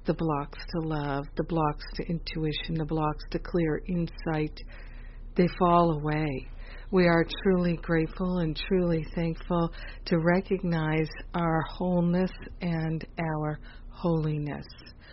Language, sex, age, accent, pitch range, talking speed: English, female, 50-69, American, 155-180 Hz, 120 wpm